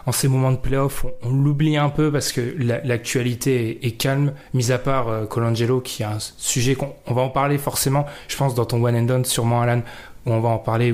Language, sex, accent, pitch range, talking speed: French, male, French, 120-140 Hz, 250 wpm